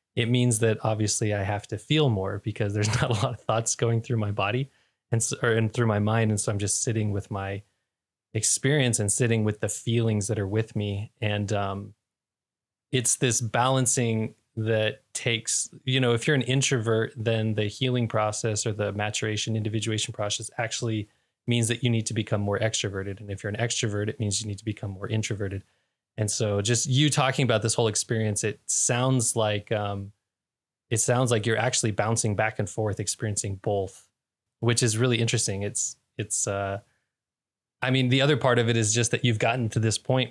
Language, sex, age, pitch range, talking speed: English, male, 20-39, 105-120 Hz, 200 wpm